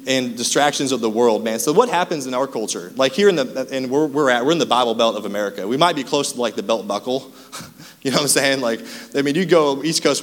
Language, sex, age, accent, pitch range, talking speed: English, male, 20-39, American, 120-160 Hz, 280 wpm